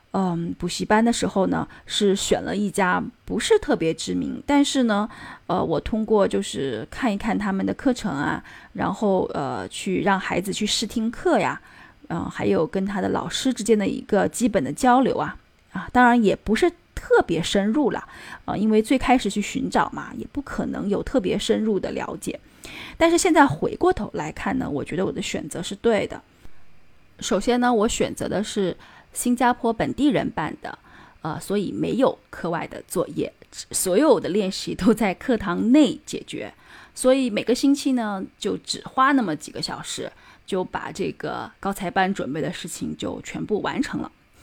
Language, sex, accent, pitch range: Chinese, female, native, 195-260 Hz